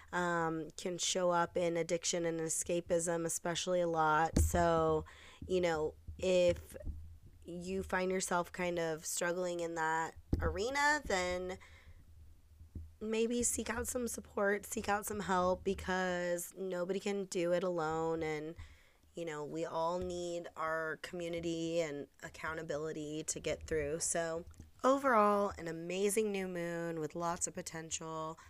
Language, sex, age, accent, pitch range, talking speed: English, female, 20-39, American, 160-180 Hz, 135 wpm